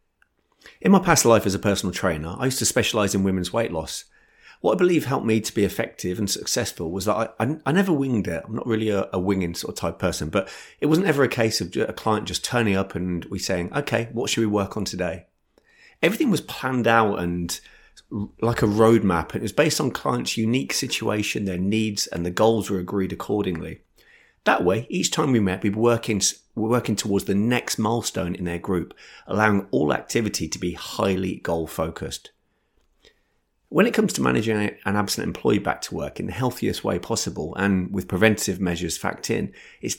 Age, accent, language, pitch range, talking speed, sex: 30-49, British, English, 90-115 Hz, 205 wpm, male